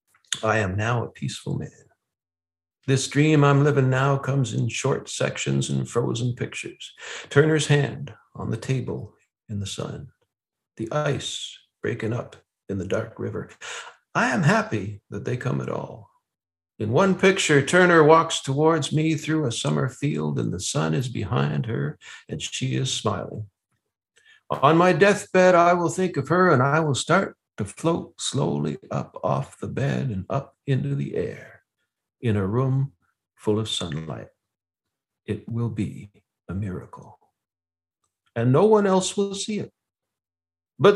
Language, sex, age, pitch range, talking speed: English, male, 60-79, 105-165 Hz, 155 wpm